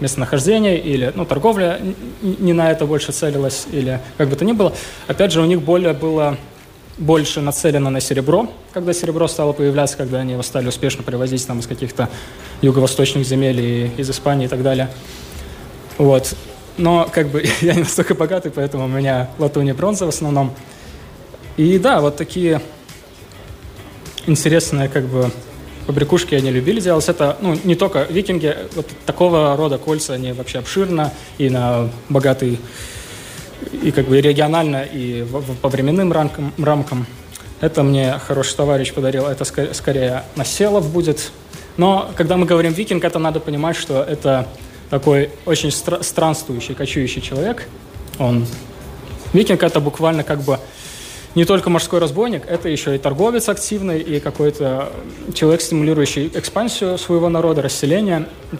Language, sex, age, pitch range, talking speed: Russian, male, 20-39, 135-165 Hz, 145 wpm